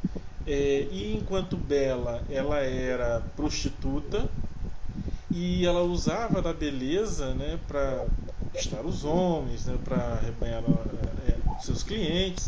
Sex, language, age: male, Portuguese, 20-39